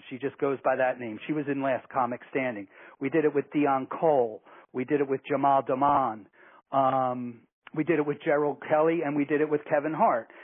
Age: 40-59